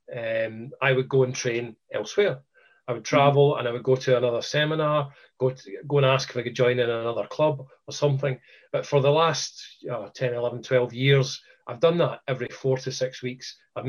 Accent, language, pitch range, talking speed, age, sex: British, English, 125-150 Hz, 210 wpm, 40-59, male